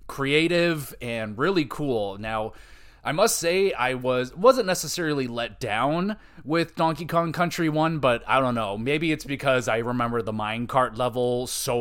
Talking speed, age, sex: 165 wpm, 20-39, male